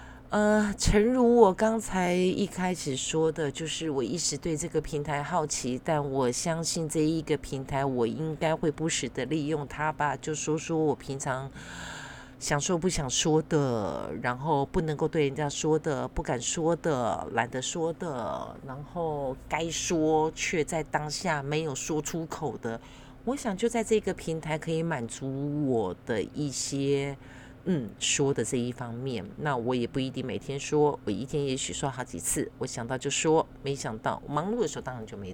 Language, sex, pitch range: Chinese, female, 130-160 Hz